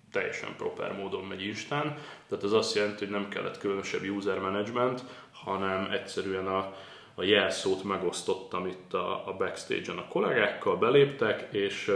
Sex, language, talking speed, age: male, Hungarian, 145 wpm, 20-39